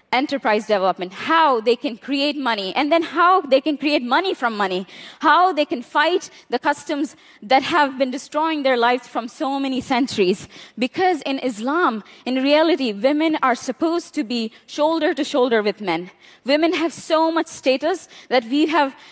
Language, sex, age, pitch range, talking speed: English, female, 20-39, 220-295 Hz, 175 wpm